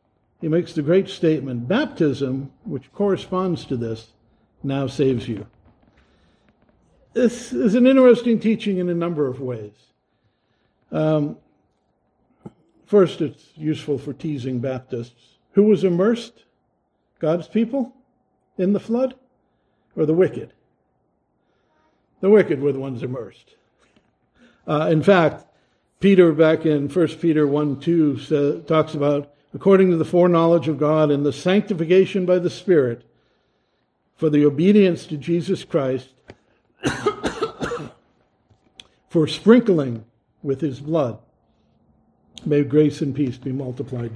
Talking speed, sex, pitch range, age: 120 wpm, male, 130-180 Hz, 60-79